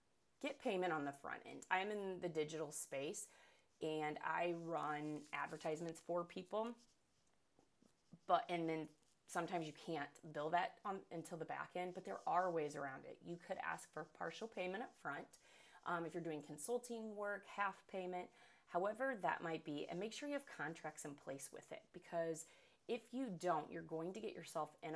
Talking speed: 185 wpm